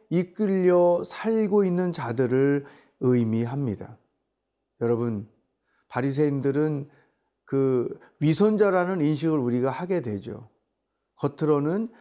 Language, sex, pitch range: Korean, male, 130-175 Hz